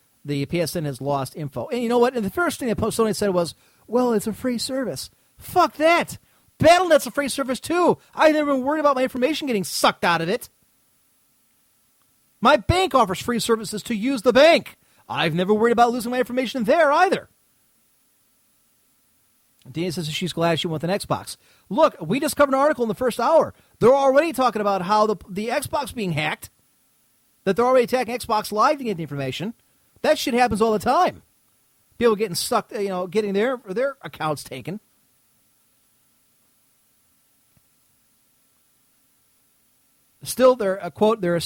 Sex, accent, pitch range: male, American, 175-250 Hz